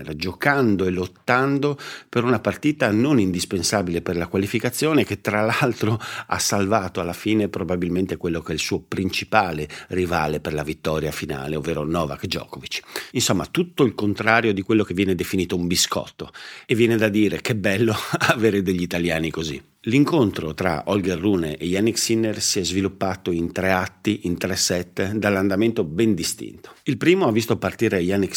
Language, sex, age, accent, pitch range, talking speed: Italian, male, 50-69, native, 90-110 Hz, 165 wpm